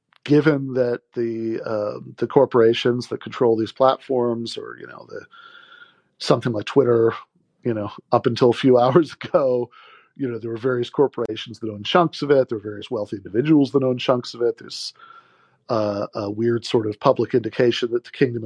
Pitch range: 110-140 Hz